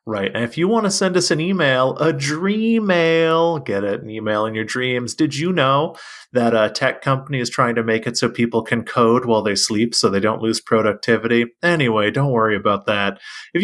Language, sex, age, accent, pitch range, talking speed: English, male, 30-49, American, 110-170 Hz, 215 wpm